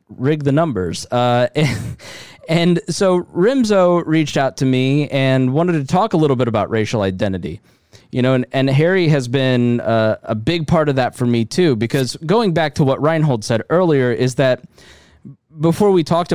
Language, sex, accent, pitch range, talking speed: English, male, American, 115-150 Hz, 185 wpm